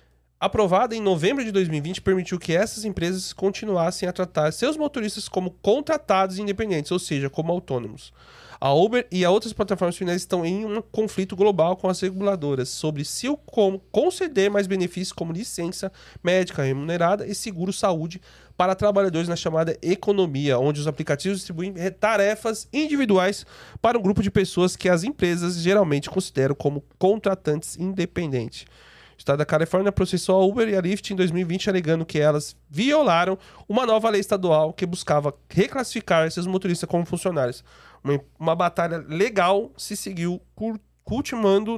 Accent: Brazilian